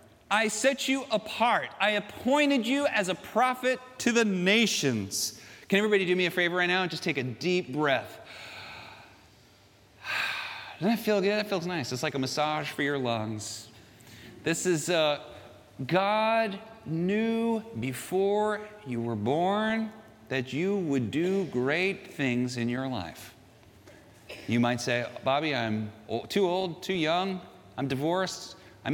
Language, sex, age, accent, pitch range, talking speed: Dutch, male, 40-59, American, 115-190 Hz, 145 wpm